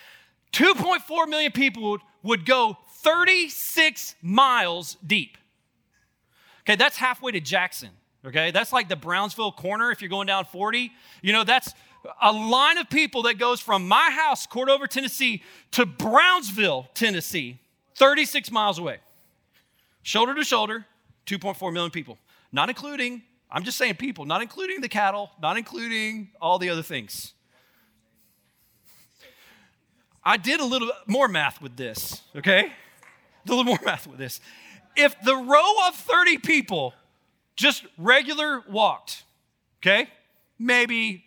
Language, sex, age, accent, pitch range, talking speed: English, male, 40-59, American, 195-275 Hz, 135 wpm